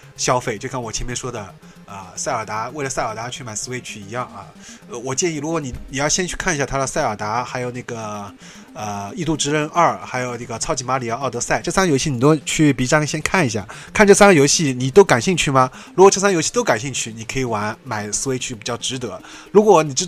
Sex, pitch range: male, 125-170 Hz